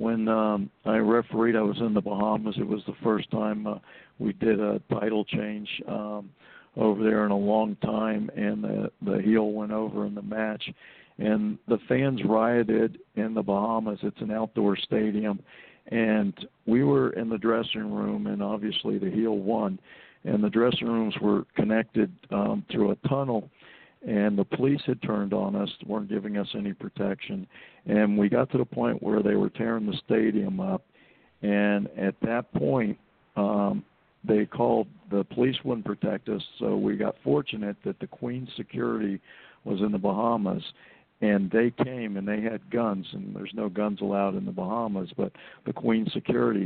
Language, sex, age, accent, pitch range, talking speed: English, male, 50-69, American, 100-115 Hz, 175 wpm